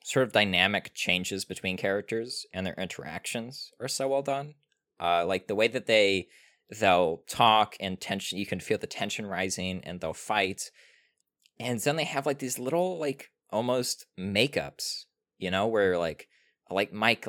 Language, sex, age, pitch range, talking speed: English, male, 20-39, 90-110 Hz, 165 wpm